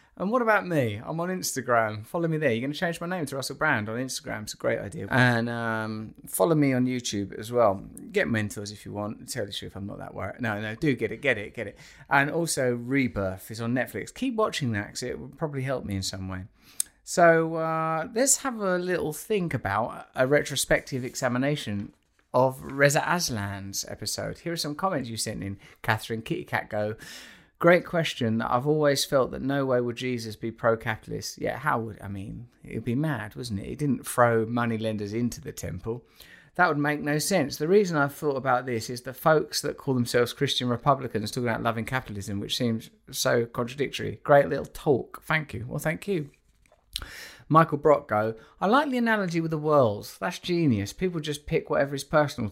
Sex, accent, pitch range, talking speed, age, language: male, British, 110-150 Hz, 205 wpm, 30-49, English